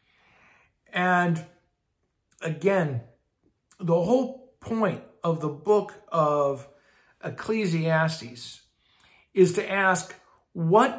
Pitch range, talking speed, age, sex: 145-185 Hz, 75 wpm, 50-69, male